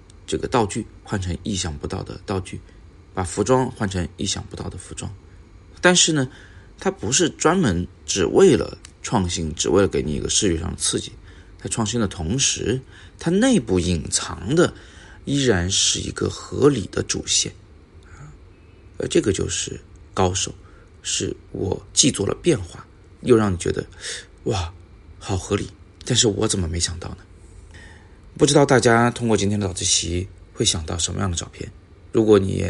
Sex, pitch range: male, 90-105 Hz